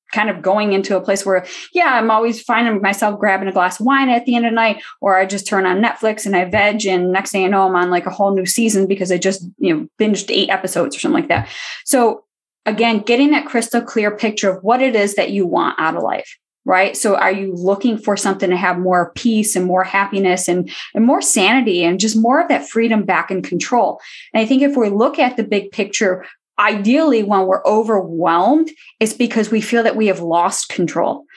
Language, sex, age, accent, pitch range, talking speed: English, female, 10-29, American, 185-240 Hz, 235 wpm